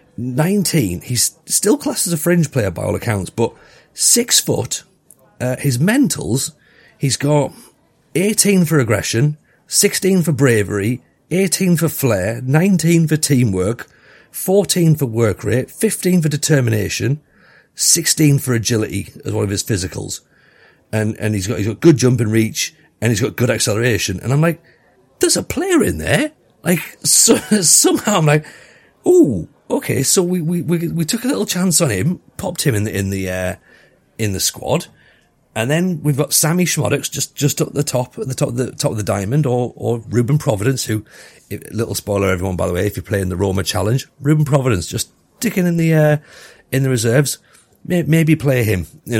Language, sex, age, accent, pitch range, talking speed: English, male, 40-59, British, 110-160 Hz, 185 wpm